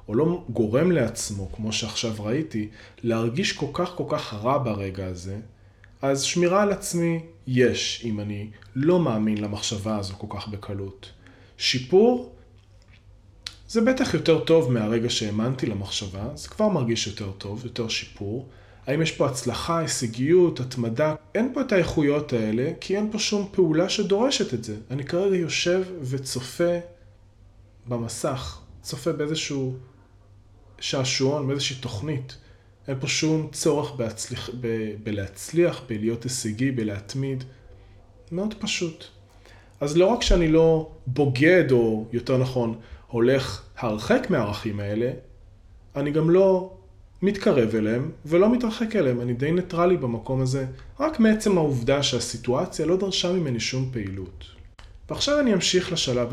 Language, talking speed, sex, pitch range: Hebrew, 130 wpm, male, 105-160 Hz